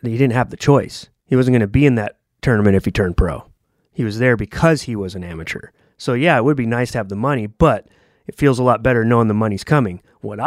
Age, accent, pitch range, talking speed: 30-49, American, 110-150 Hz, 265 wpm